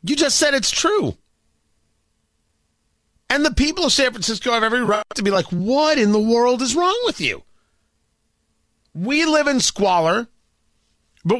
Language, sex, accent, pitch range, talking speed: English, male, American, 150-250 Hz, 160 wpm